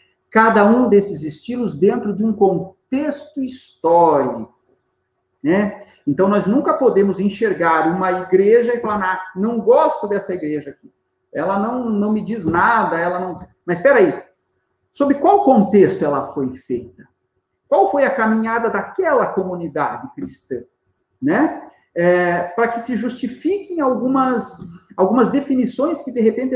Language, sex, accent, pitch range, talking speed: Portuguese, male, Brazilian, 175-255 Hz, 140 wpm